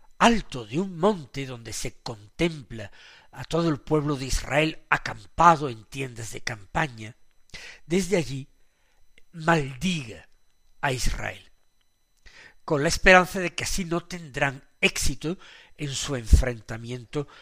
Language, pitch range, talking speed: Spanish, 130-190 Hz, 120 wpm